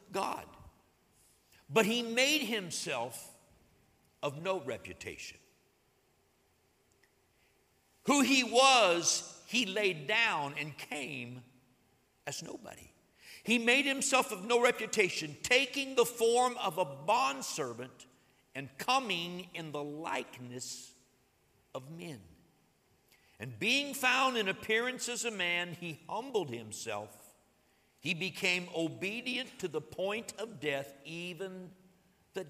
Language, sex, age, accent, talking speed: English, male, 60-79, American, 110 wpm